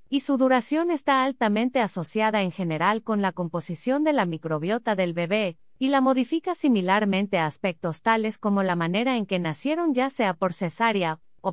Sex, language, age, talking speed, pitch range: female, Spanish, 30-49, 175 wpm, 175-240 Hz